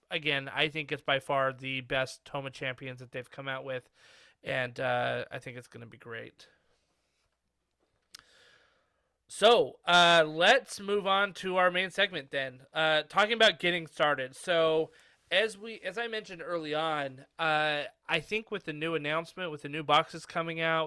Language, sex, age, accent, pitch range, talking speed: English, male, 30-49, American, 140-170 Hz, 175 wpm